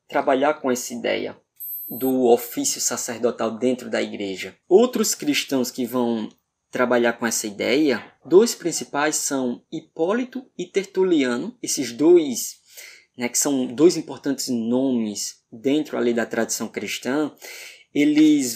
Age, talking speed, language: 20-39, 125 wpm, Portuguese